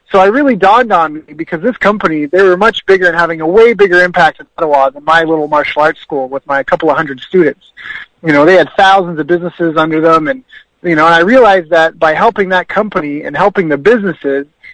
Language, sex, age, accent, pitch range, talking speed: English, male, 30-49, American, 155-195 Hz, 230 wpm